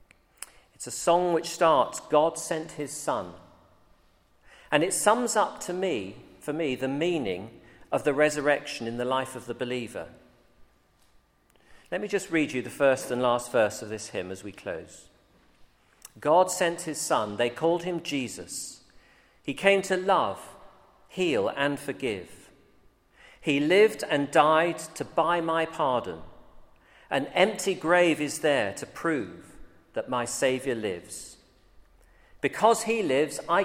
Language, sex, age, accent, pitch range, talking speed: English, male, 40-59, British, 125-180 Hz, 145 wpm